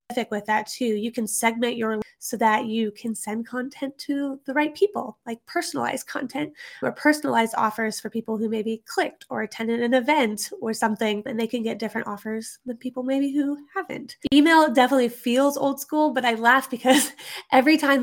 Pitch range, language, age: 225-280 Hz, English, 20-39